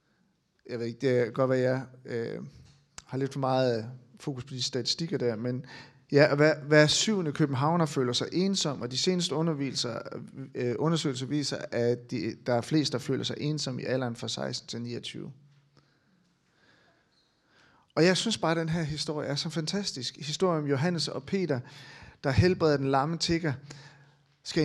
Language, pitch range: Danish, 135-170 Hz